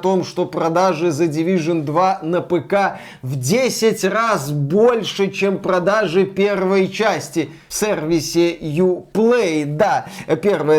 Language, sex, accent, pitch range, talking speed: Russian, male, native, 175-205 Hz, 120 wpm